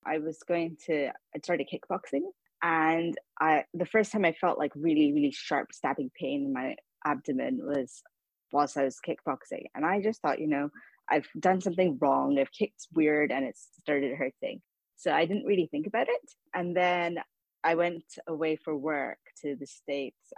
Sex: female